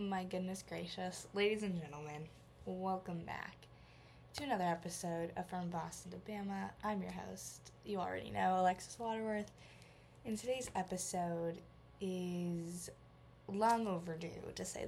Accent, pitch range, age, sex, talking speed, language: American, 175-205 Hz, 10-29, female, 130 wpm, English